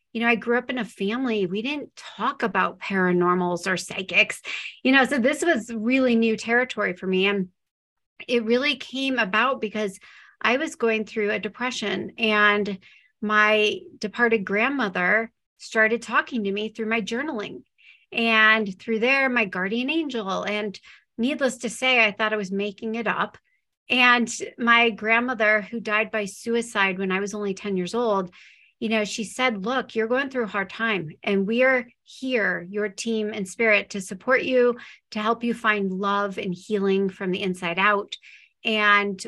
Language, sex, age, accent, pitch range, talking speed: English, female, 40-59, American, 200-240 Hz, 175 wpm